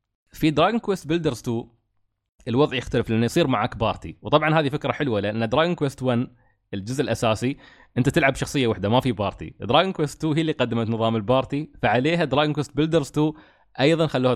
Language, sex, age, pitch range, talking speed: Arabic, male, 20-39, 110-145 Hz, 180 wpm